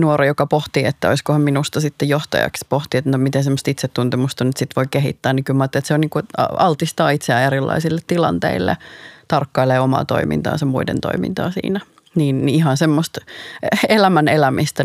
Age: 30-49